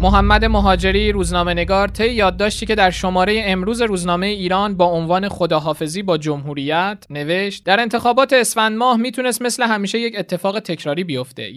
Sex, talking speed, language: male, 145 wpm, Persian